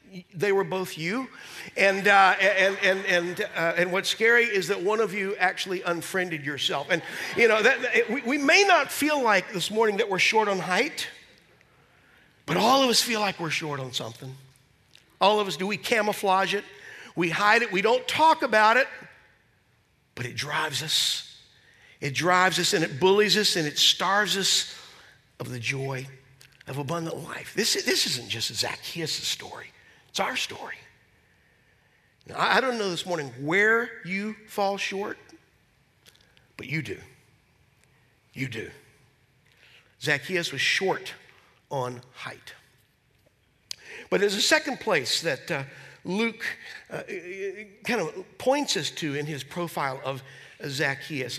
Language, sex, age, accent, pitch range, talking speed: English, male, 50-69, American, 150-210 Hz, 155 wpm